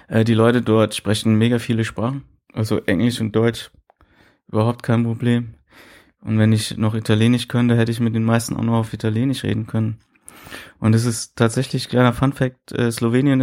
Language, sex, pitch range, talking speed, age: German, male, 110-125 Hz, 185 wpm, 20-39